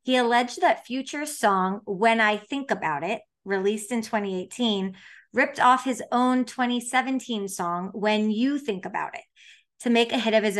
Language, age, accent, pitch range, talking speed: English, 30-49, American, 195-245 Hz, 170 wpm